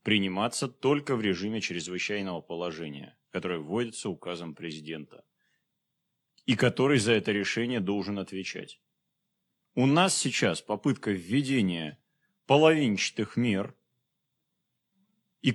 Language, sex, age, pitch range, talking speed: Russian, male, 30-49, 115-190 Hz, 95 wpm